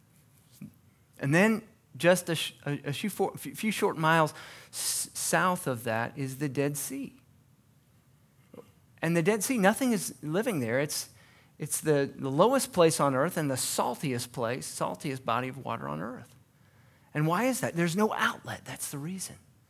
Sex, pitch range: male, 135-205 Hz